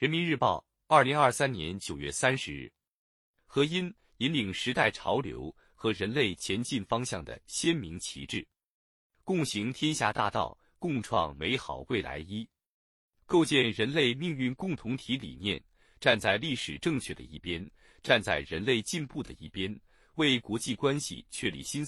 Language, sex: Chinese, male